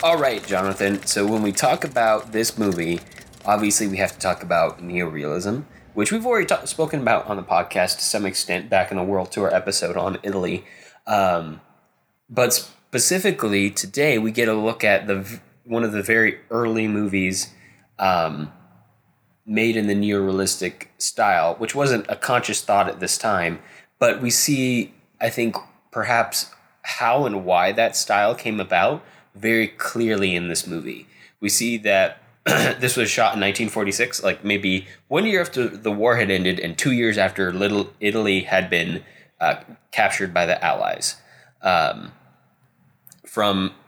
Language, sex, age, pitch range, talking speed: English, male, 20-39, 95-115 Hz, 160 wpm